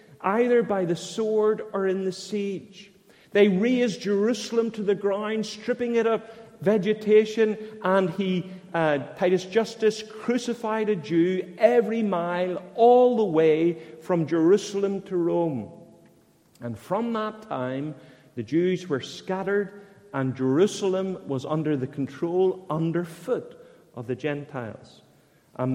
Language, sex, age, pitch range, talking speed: English, male, 40-59, 145-215 Hz, 125 wpm